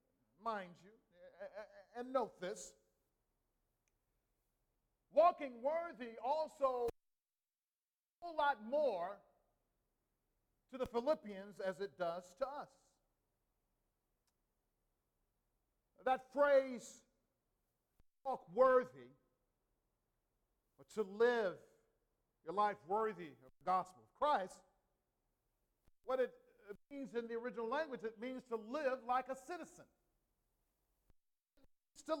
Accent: American